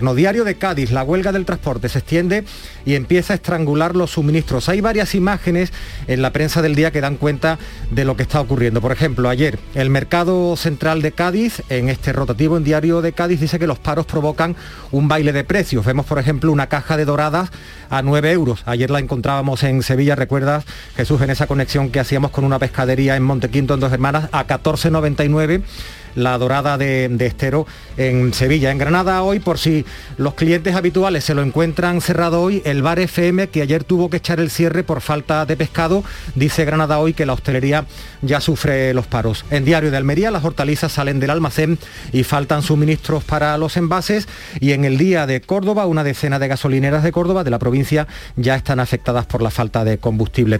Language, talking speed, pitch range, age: Spanish, 200 wpm, 130-165 Hz, 40-59